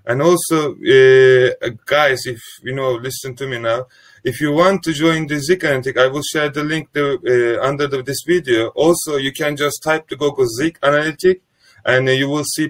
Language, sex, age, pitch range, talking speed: Turkish, male, 30-49, 130-160 Hz, 210 wpm